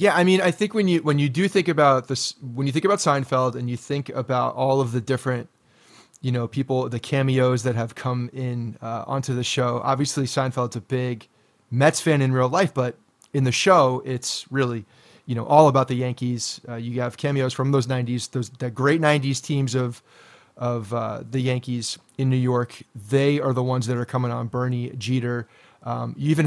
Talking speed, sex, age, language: 210 wpm, male, 30-49, English